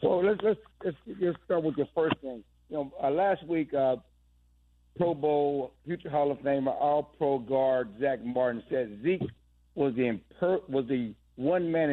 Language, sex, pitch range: English, male, 125-150 Hz